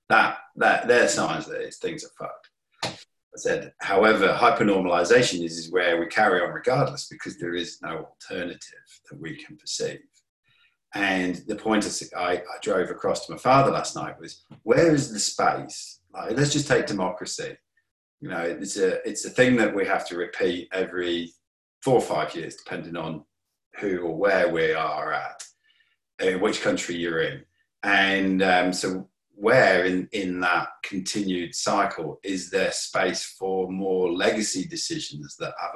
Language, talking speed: English, 165 wpm